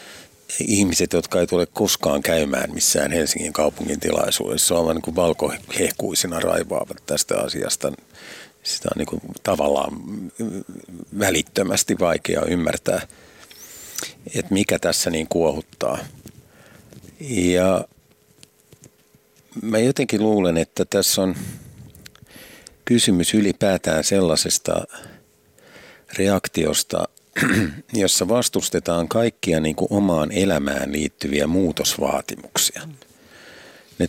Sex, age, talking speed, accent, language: male, 50-69, 80 wpm, native, Finnish